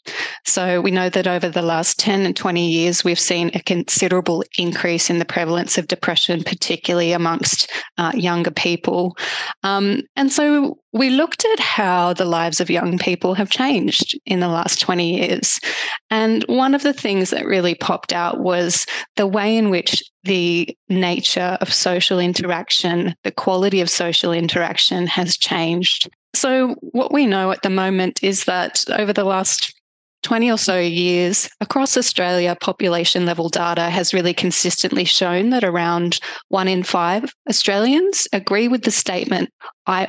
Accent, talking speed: Australian, 160 wpm